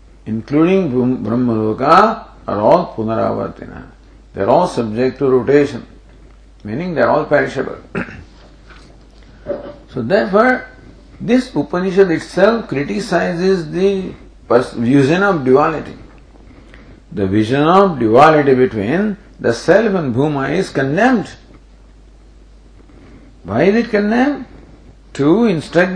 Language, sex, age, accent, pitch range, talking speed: English, male, 50-69, Indian, 120-175 Hz, 100 wpm